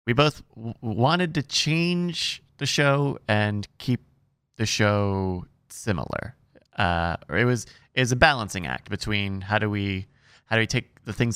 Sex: male